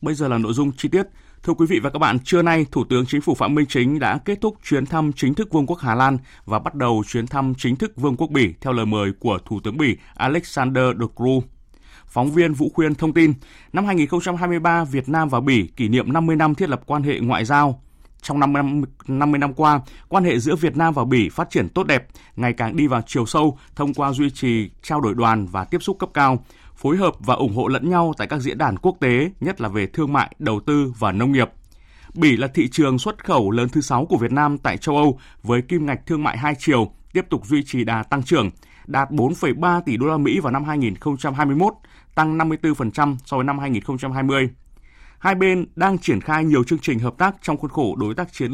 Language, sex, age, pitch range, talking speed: Vietnamese, male, 20-39, 125-155 Hz, 235 wpm